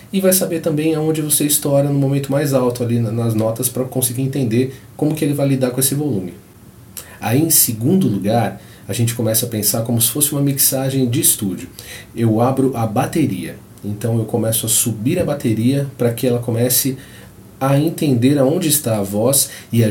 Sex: male